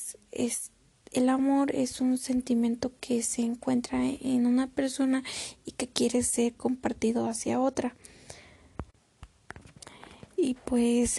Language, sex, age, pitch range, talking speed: Spanish, female, 20-39, 230-250 Hz, 115 wpm